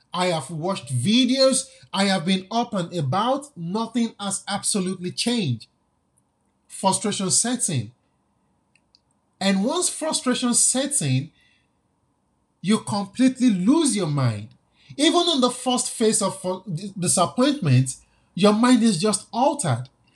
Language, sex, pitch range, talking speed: English, male, 170-240 Hz, 115 wpm